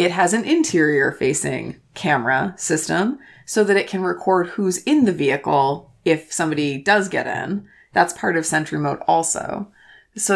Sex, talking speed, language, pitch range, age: female, 155 wpm, English, 145-180 Hz, 20-39